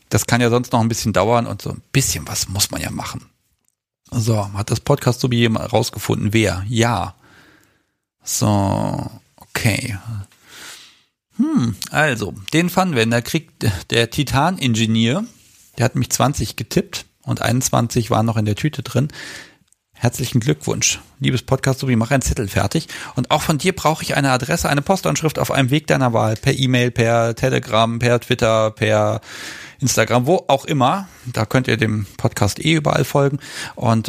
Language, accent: German, German